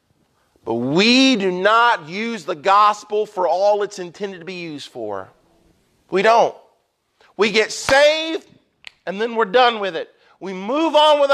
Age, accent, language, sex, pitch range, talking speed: 40-59, American, English, male, 180-240 Hz, 160 wpm